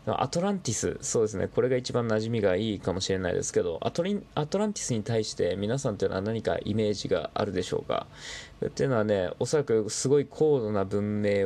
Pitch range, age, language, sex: 105-155 Hz, 20-39, Japanese, male